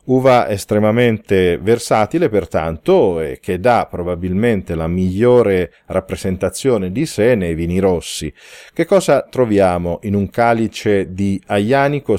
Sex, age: male, 40-59